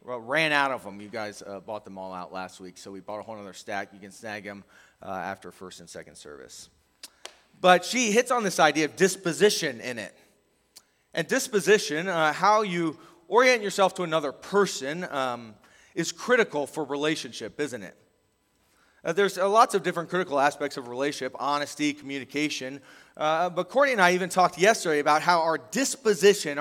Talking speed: 180 wpm